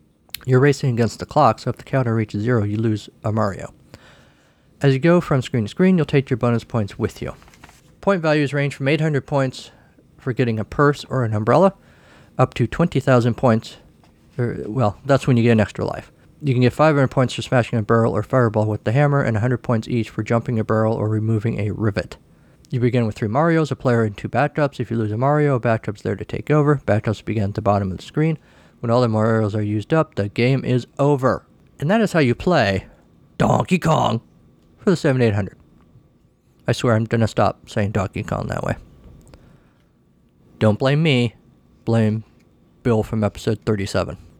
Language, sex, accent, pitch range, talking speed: English, male, American, 110-135 Hz, 205 wpm